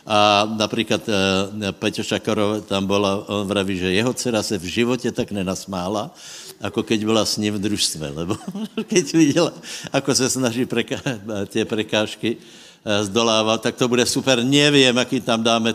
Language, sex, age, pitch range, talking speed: Slovak, male, 70-89, 105-135 Hz, 170 wpm